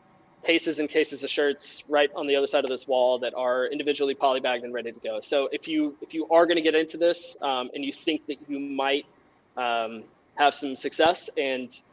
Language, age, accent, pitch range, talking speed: English, 20-39, American, 125-155 Hz, 220 wpm